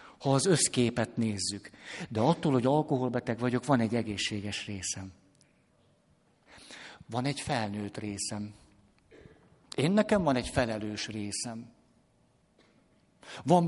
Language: Hungarian